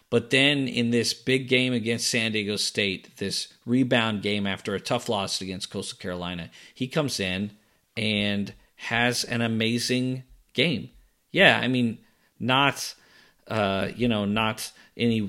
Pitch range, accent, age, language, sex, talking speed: 100-125 Hz, American, 40-59, English, male, 145 wpm